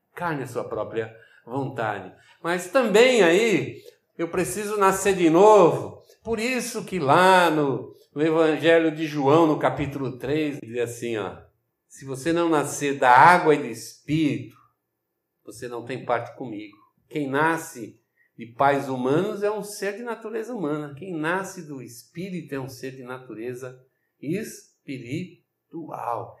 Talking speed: 145 wpm